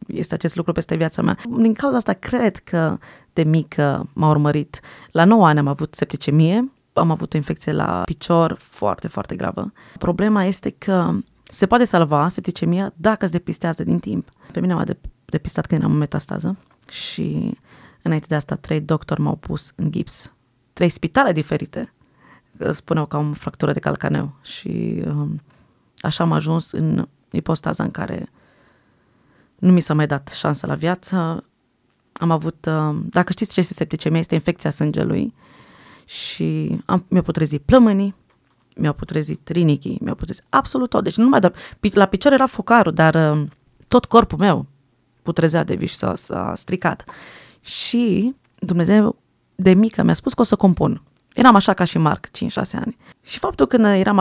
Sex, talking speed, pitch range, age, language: female, 160 wpm, 155-200 Hz, 20-39, Romanian